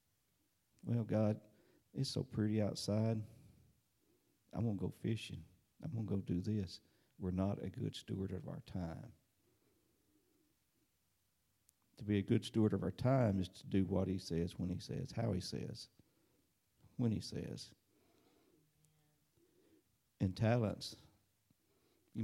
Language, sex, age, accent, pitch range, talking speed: English, male, 50-69, American, 95-115 Hz, 140 wpm